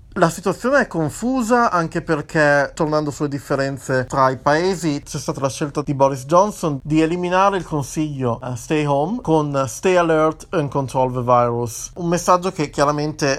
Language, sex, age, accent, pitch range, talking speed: Italian, male, 30-49, native, 130-155 Hz, 165 wpm